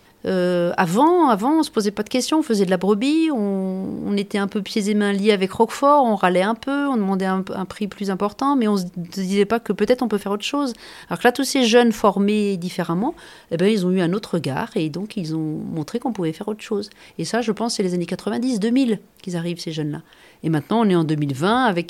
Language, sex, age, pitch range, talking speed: French, female, 40-59, 185-230 Hz, 265 wpm